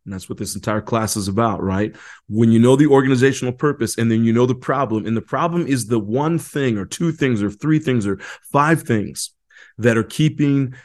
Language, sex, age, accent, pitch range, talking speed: English, male, 30-49, American, 110-130 Hz, 220 wpm